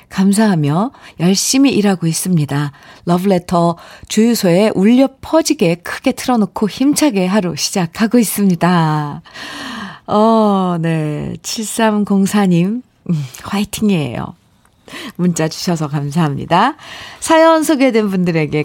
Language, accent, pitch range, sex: Korean, native, 165-240 Hz, female